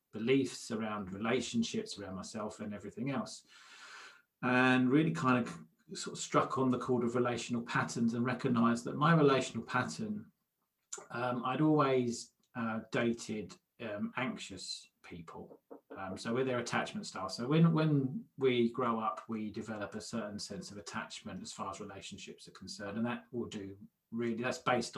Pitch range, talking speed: 110-135 Hz, 160 wpm